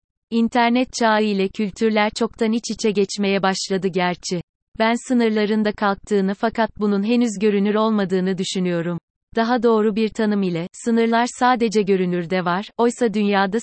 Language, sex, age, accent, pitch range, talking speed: Turkish, female, 30-49, native, 195-225 Hz, 130 wpm